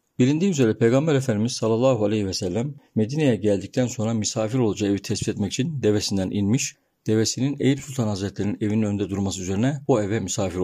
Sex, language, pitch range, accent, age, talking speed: male, Turkish, 105-135 Hz, native, 50-69, 170 wpm